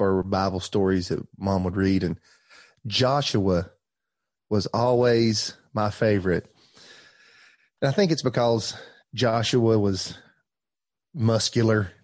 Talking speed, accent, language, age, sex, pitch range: 105 wpm, American, English, 30-49, male, 105-125 Hz